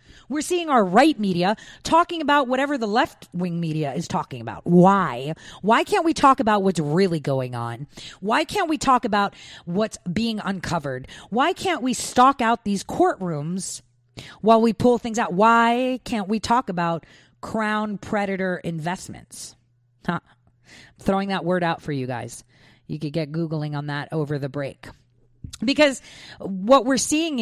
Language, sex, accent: English, female, American